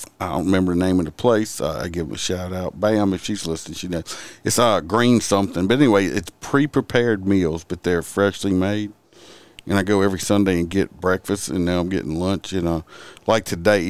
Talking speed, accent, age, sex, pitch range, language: 210 wpm, American, 50-69, male, 90-105 Hz, English